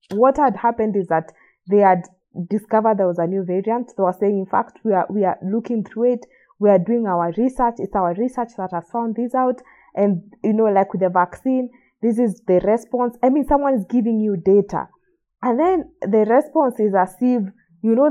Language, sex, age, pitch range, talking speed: English, female, 20-39, 185-240 Hz, 215 wpm